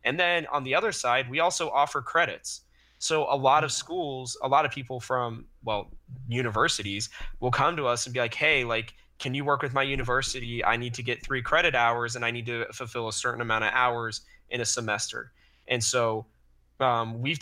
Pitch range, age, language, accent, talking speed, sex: 115-135 Hz, 20-39, English, American, 210 wpm, male